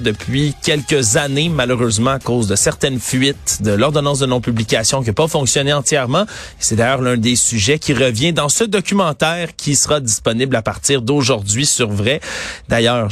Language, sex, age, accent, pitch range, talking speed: French, male, 30-49, Canadian, 115-145 Hz, 170 wpm